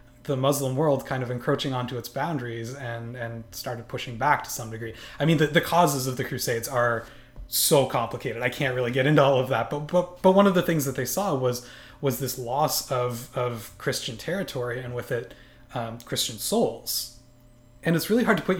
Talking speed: 215 wpm